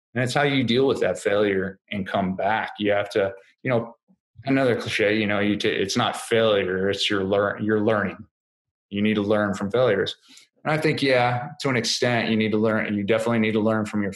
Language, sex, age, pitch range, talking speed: English, male, 20-39, 100-115 Hz, 235 wpm